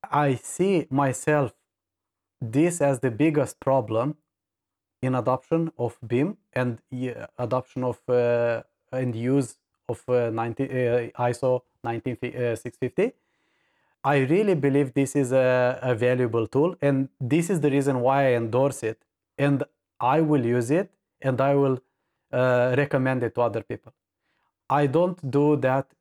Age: 30-49